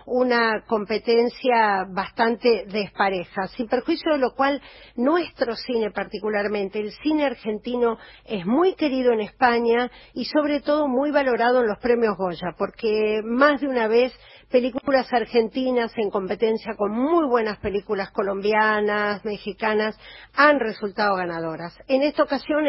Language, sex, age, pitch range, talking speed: Spanish, female, 40-59, 210-265 Hz, 130 wpm